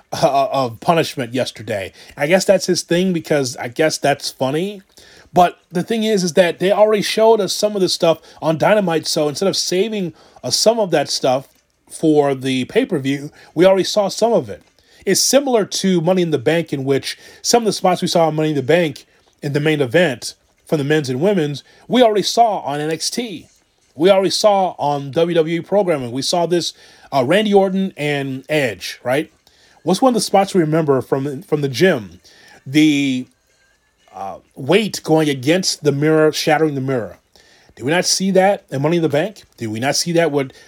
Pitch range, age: 140-190 Hz, 30-49